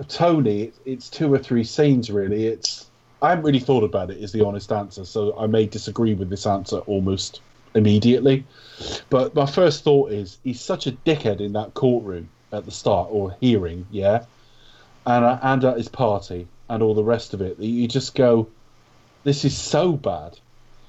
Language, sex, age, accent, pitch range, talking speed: English, male, 30-49, British, 100-125 Hz, 185 wpm